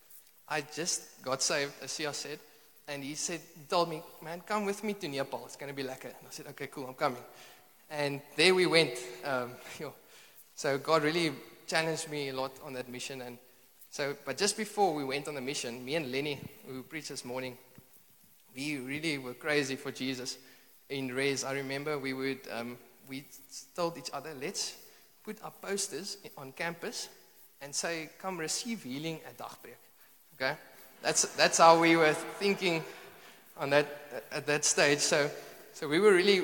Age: 20-39